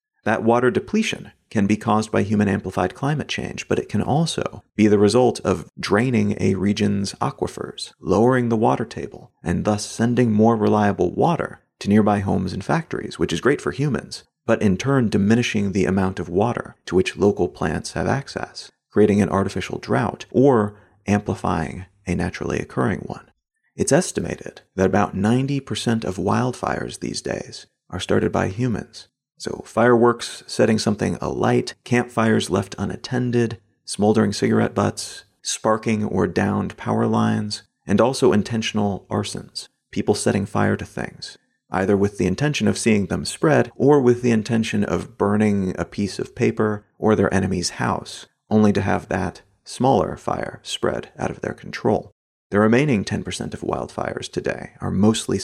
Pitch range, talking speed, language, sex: 95-115 Hz, 155 wpm, English, male